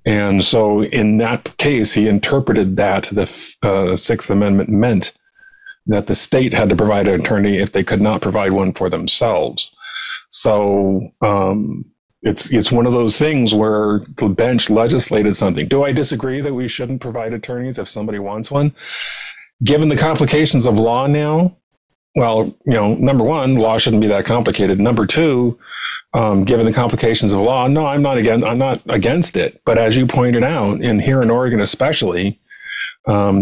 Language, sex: English, male